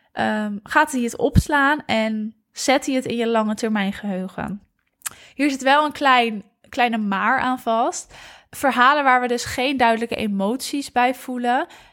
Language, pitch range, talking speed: Dutch, 220-255 Hz, 160 wpm